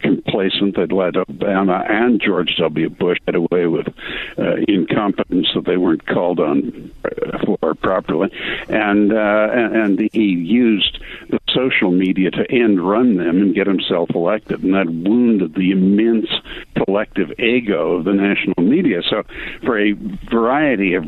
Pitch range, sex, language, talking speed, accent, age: 95-110 Hz, male, English, 150 wpm, American, 60-79